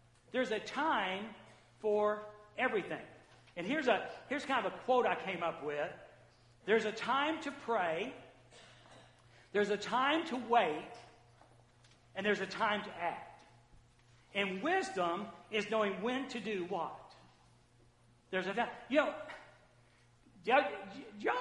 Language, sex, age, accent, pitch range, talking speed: English, male, 60-79, American, 205-320 Hz, 135 wpm